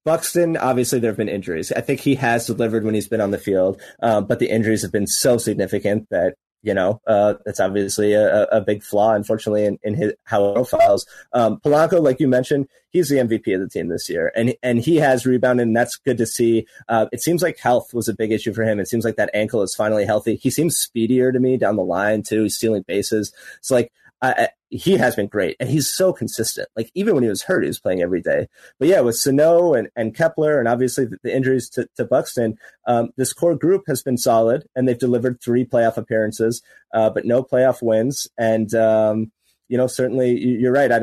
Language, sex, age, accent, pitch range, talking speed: English, male, 30-49, American, 105-125 Hz, 235 wpm